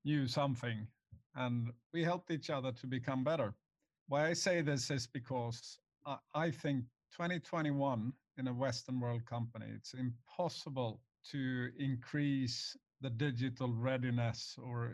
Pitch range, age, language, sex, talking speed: 120-150 Hz, 50-69, English, male, 135 wpm